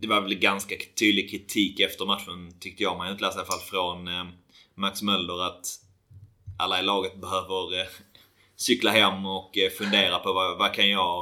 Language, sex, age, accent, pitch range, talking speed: Swedish, male, 30-49, native, 90-100 Hz, 200 wpm